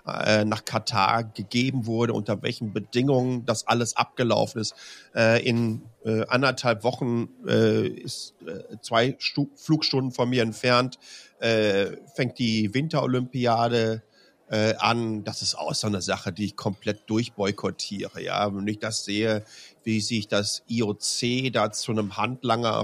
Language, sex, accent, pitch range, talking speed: German, male, German, 115-135 Hz, 125 wpm